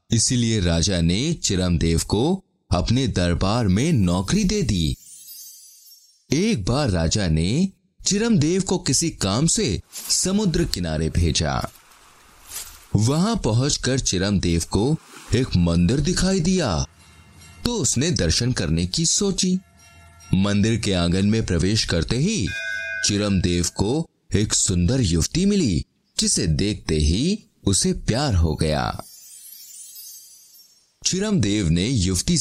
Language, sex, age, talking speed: Hindi, male, 30-49, 110 wpm